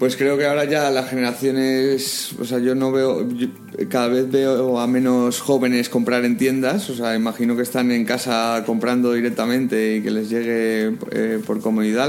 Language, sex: Spanish, male